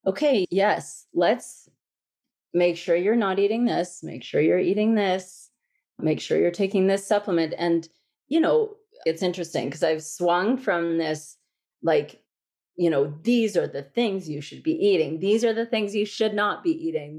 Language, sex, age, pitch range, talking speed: English, female, 30-49, 160-220 Hz, 175 wpm